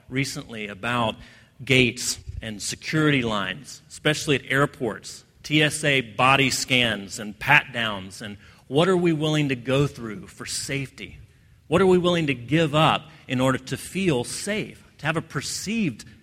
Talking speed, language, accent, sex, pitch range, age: 150 wpm, English, American, male, 120-165 Hz, 40-59